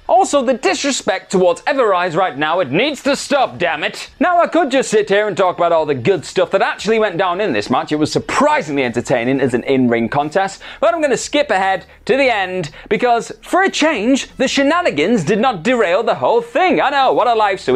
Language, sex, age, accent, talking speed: English, male, 30-49, British, 230 wpm